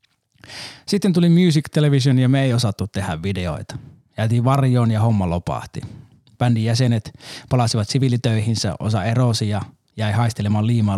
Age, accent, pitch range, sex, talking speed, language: 30-49, native, 105-135 Hz, male, 135 wpm, Finnish